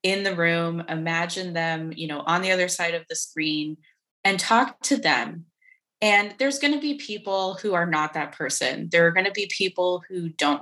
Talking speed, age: 210 wpm, 20-39